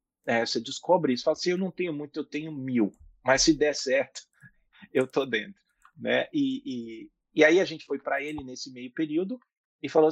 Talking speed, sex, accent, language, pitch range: 210 wpm, male, Brazilian, Portuguese, 125-165 Hz